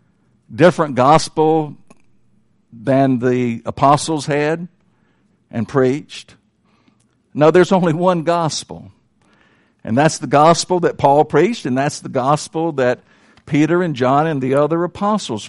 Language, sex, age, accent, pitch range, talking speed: English, male, 60-79, American, 125-170 Hz, 125 wpm